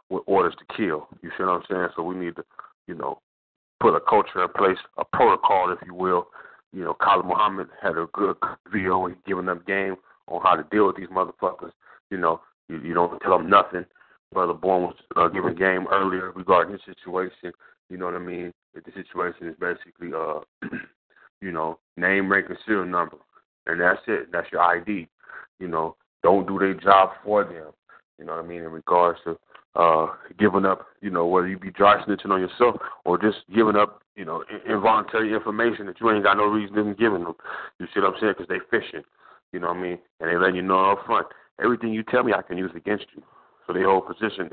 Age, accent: 30-49, American